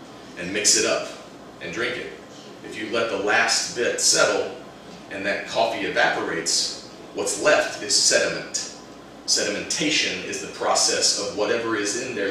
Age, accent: 30-49, American